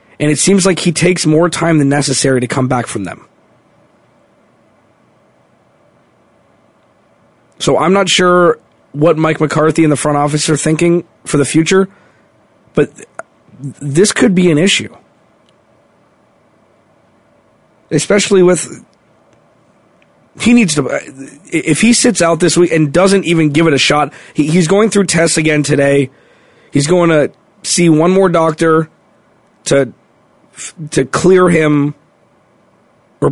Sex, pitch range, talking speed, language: male, 135-170 Hz, 130 wpm, English